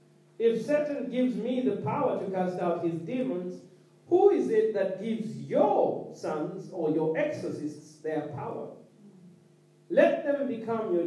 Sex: male